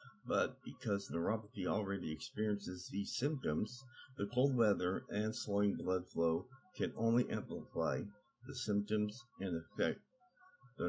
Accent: American